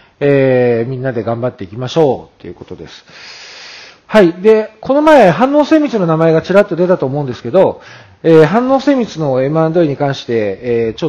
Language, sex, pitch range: Japanese, male, 125-200 Hz